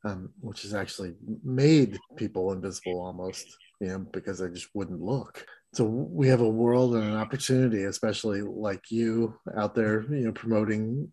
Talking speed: 165 wpm